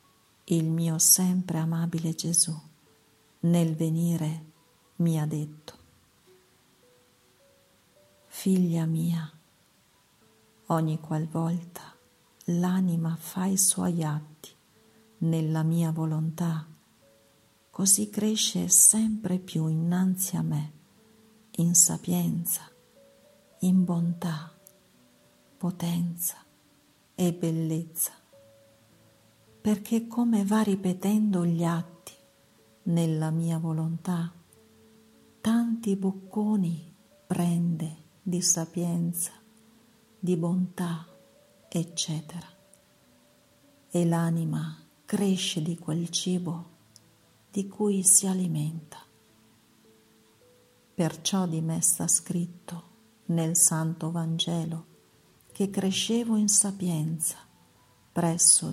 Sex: female